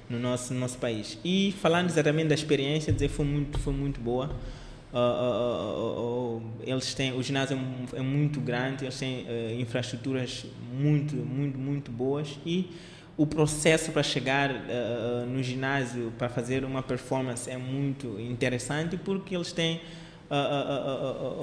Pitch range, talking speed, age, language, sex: 120-145 Hz, 160 wpm, 20-39, Portuguese, male